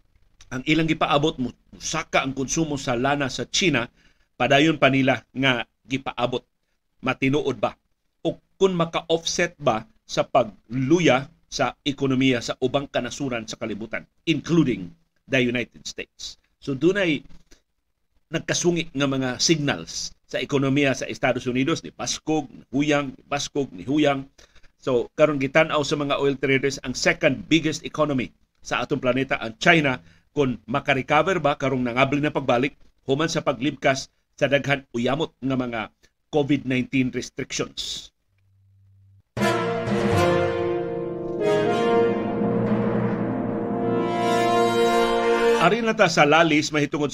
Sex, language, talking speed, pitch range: male, Filipino, 115 wpm, 120-155 Hz